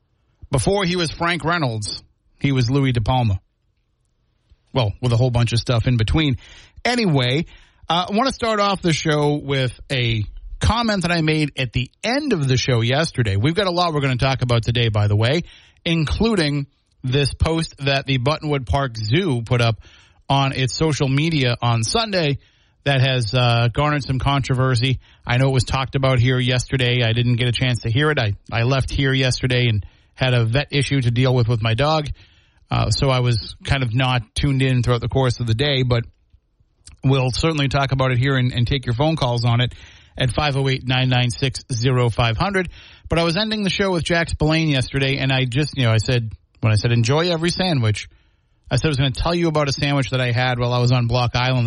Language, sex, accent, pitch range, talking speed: English, male, American, 120-145 Hz, 215 wpm